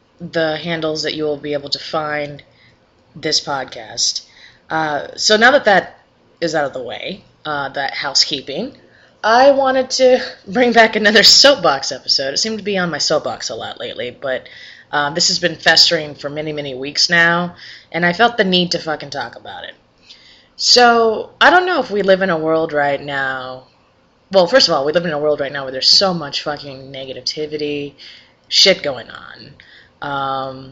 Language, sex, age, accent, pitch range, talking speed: English, female, 20-39, American, 140-175 Hz, 190 wpm